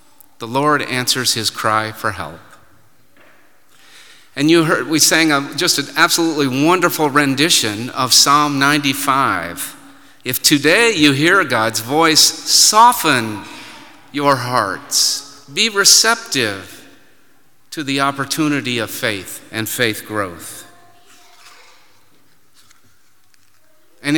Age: 50-69